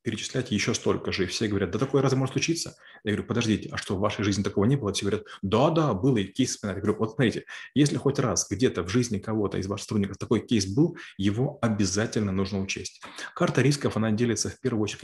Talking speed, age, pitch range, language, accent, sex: 230 wpm, 30-49, 100-125 Hz, Russian, native, male